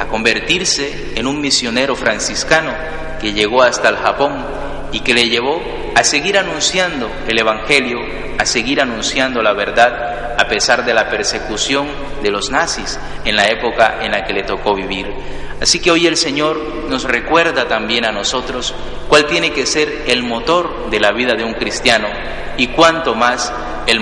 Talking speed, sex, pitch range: 165 wpm, male, 115-150 Hz